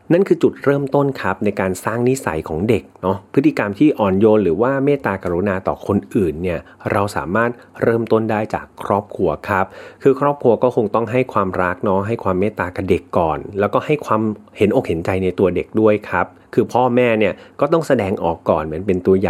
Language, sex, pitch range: Thai, male, 95-120 Hz